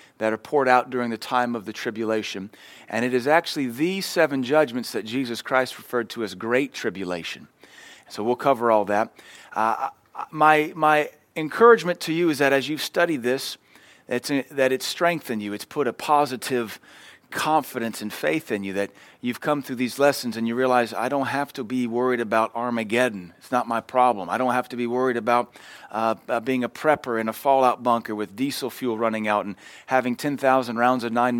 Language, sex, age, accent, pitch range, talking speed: English, male, 40-59, American, 120-145 Hz, 195 wpm